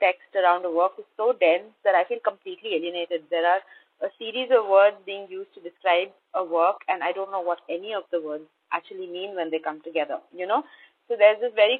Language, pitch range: Czech, 165-205 Hz